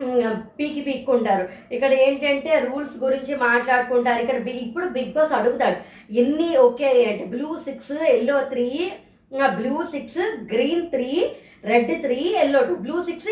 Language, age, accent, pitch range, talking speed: Telugu, 20-39, native, 255-315 Hz, 135 wpm